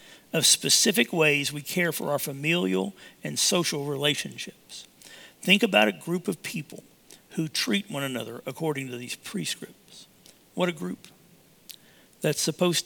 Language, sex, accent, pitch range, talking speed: English, male, American, 145-180 Hz, 140 wpm